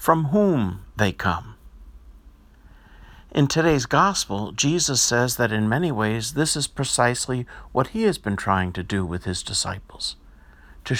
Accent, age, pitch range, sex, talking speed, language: American, 50-69, 95-145 Hz, male, 145 wpm, English